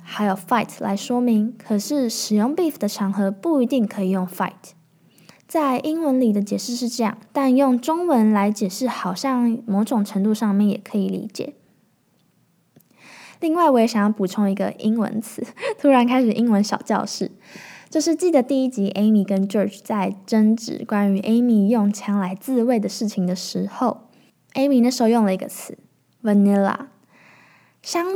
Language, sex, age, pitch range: Chinese, female, 10-29, 200-250 Hz